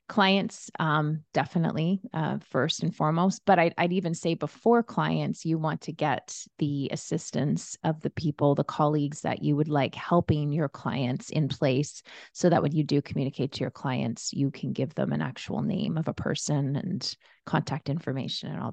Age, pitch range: 30-49, 145-175 Hz